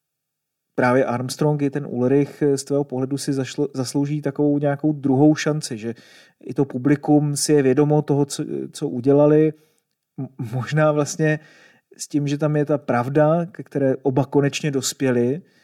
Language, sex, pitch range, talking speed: Czech, male, 130-145 Hz, 145 wpm